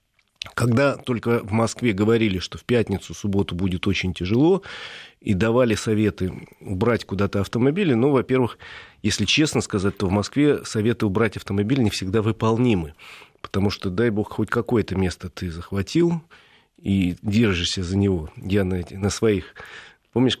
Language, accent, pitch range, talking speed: Russian, native, 95-120 Hz, 145 wpm